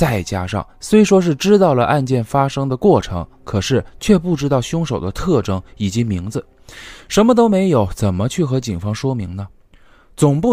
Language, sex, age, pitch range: Chinese, male, 20-39, 100-170 Hz